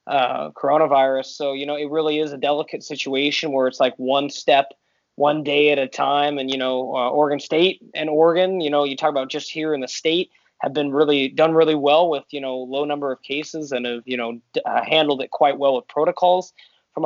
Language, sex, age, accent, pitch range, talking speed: English, male, 20-39, American, 135-160 Hz, 225 wpm